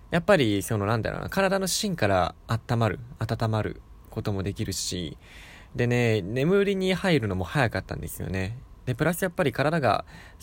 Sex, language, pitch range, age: male, Japanese, 95-125 Hz, 20-39